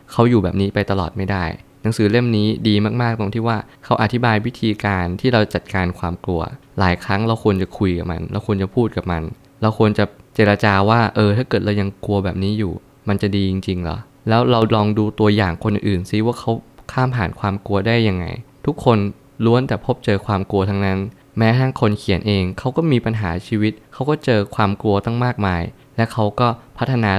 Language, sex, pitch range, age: Thai, male, 100-120 Hz, 20-39